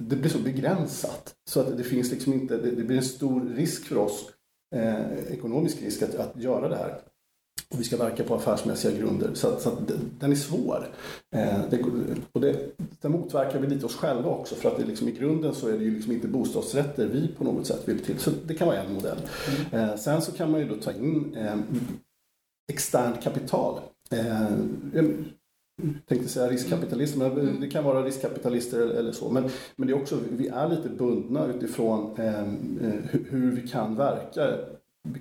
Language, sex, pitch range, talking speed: Swedish, male, 115-140 Hz, 195 wpm